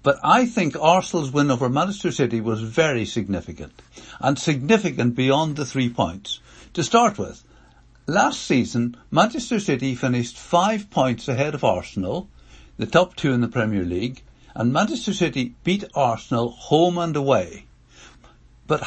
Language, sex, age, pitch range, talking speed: English, male, 60-79, 120-180 Hz, 145 wpm